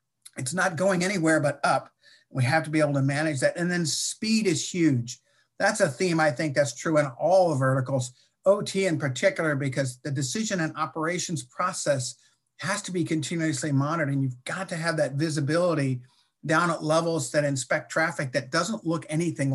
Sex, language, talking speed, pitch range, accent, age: male, English, 185 wpm, 140-170 Hz, American, 50-69